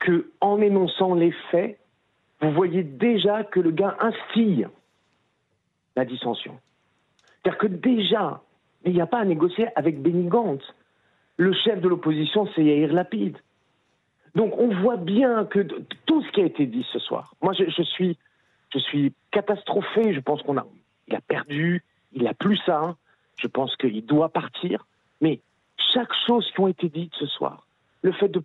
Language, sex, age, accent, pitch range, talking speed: French, male, 50-69, French, 155-210 Hz, 170 wpm